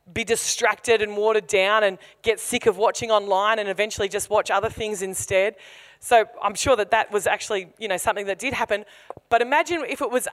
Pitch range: 210-260 Hz